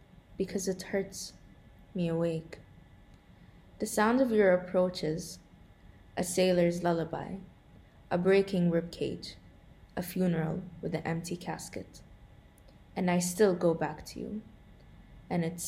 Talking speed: 125 wpm